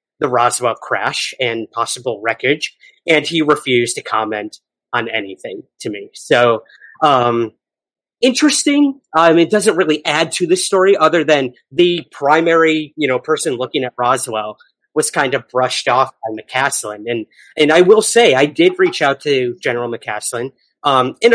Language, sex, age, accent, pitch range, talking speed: English, male, 30-49, American, 125-180 Hz, 160 wpm